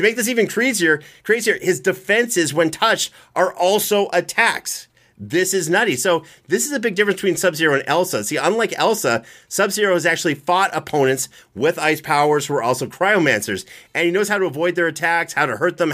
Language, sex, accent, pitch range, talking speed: English, male, American, 150-190 Hz, 200 wpm